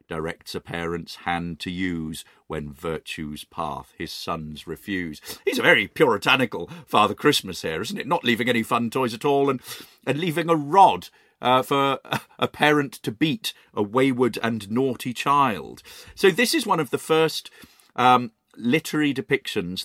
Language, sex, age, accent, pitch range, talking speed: English, male, 40-59, British, 90-135 Hz, 165 wpm